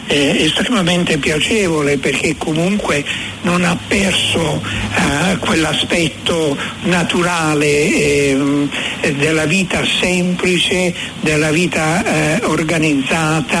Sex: male